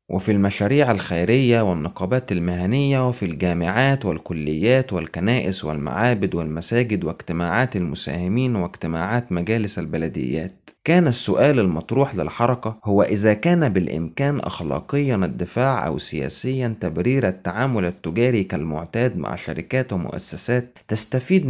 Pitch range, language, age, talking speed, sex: 90-130 Hz, Arabic, 30-49, 100 wpm, male